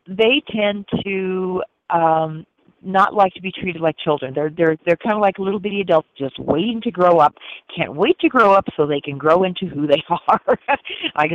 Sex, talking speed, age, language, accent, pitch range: female, 205 wpm, 40-59, English, American, 150-190 Hz